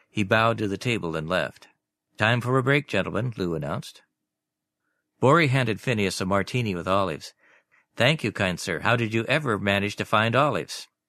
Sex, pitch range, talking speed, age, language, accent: male, 95-120 Hz, 180 wpm, 50-69, English, American